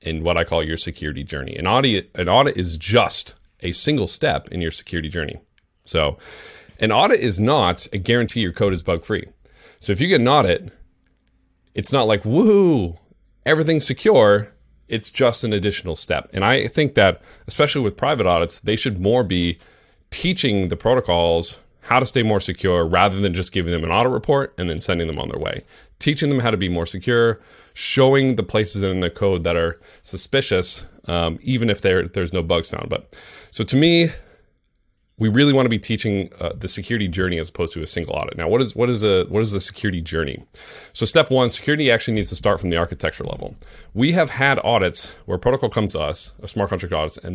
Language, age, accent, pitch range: English, 30-49, American, 85-120 Hz